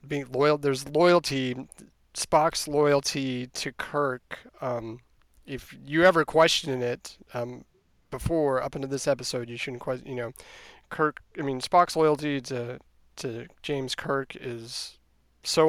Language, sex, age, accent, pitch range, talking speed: English, male, 30-49, American, 120-145 Hz, 140 wpm